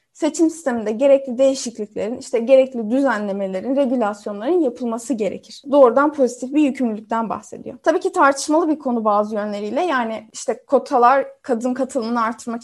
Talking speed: 135 wpm